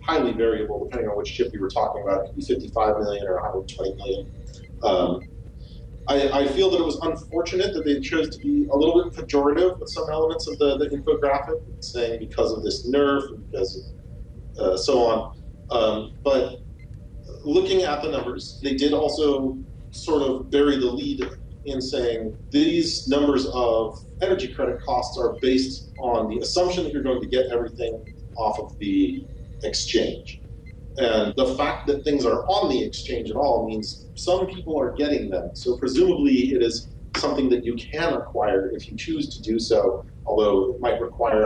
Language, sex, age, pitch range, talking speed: English, male, 40-59, 115-155 Hz, 185 wpm